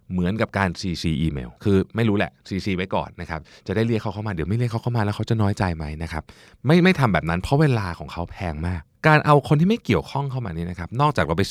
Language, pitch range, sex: Thai, 85-120 Hz, male